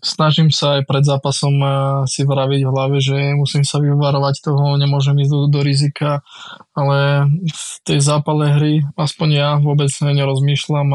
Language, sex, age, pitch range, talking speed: Slovak, male, 20-39, 145-155 Hz, 155 wpm